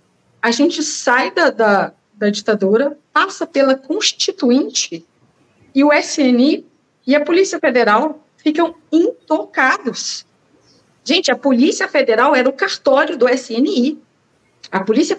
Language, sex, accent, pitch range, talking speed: Portuguese, female, Brazilian, 220-295 Hz, 120 wpm